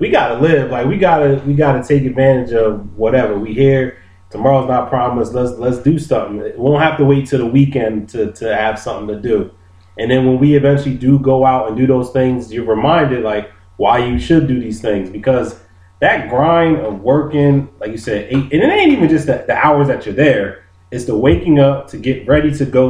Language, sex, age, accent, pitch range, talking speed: English, male, 30-49, American, 105-140 Hz, 230 wpm